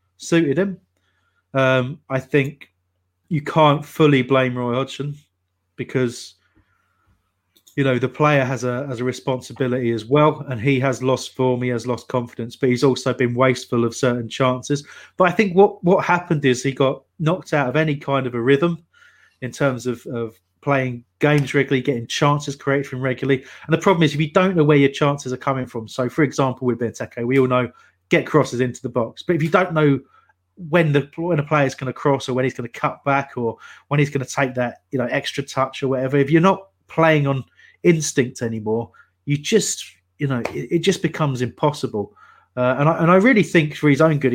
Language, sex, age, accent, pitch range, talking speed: English, male, 30-49, British, 120-150 Hz, 210 wpm